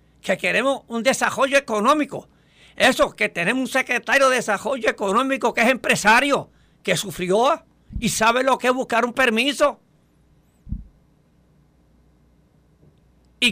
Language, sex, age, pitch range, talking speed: Spanish, male, 60-79, 165-240 Hz, 120 wpm